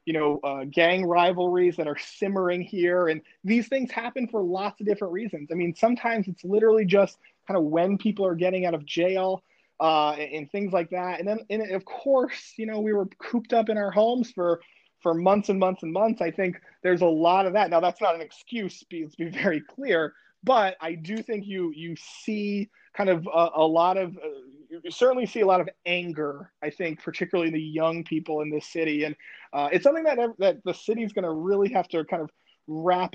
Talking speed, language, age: 225 wpm, English, 30-49